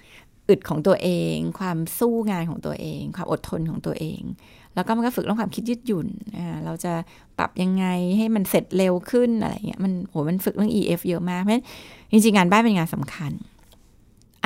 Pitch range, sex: 175-220 Hz, female